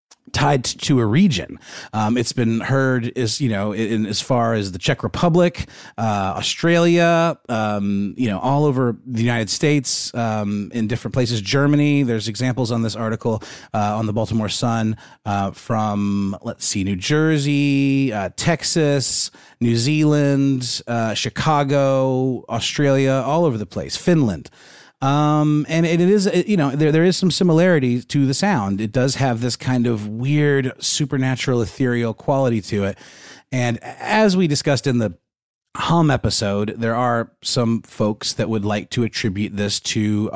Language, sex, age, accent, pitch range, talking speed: English, male, 30-49, American, 105-140 Hz, 160 wpm